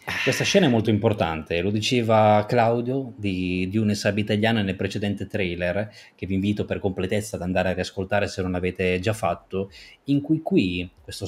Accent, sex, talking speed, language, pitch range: native, male, 180 wpm, Italian, 95-115 Hz